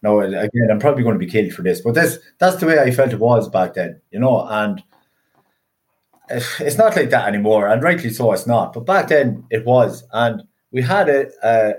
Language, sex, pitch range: English, male, 110-140 Hz